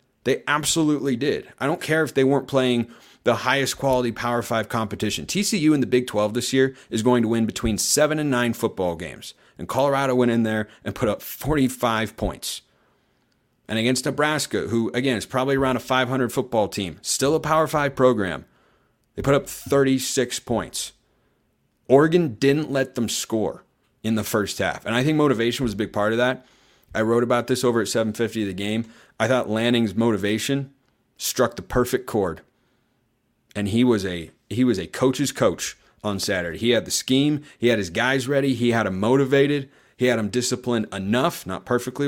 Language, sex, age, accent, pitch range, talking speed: English, male, 30-49, American, 110-135 Hz, 190 wpm